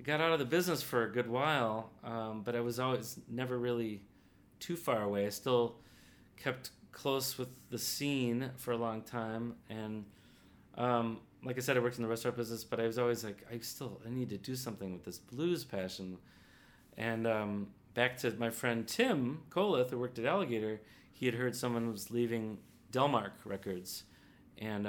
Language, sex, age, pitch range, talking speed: English, male, 30-49, 100-120 Hz, 190 wpm